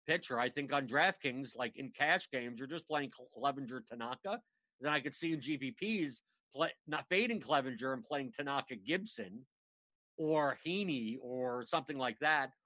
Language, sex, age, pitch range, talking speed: English, male, 50-69, 135-185 Hz, 160 wpm